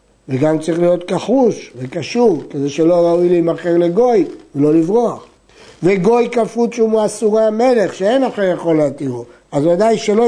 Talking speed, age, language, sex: 140 wpm, 60-79, Hebrew, male